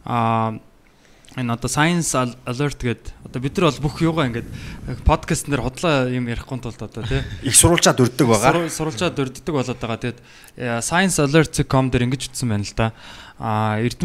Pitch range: 115-145 Hz